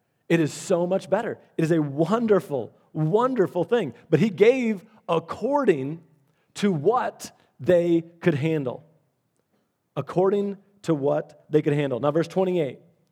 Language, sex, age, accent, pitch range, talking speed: English, male, 30-49, American, 135-180 Hz, 135 wpm